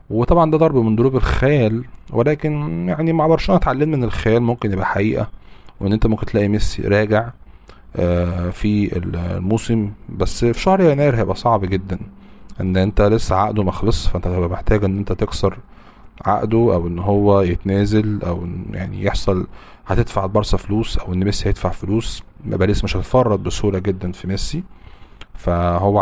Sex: male